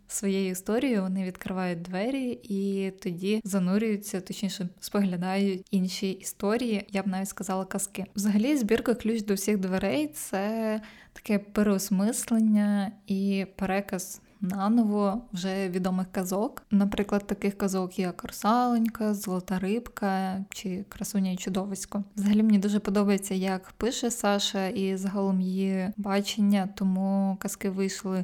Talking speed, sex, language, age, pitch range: 120 wpm, female, Ukrainian, 20-39, 190-210 Hz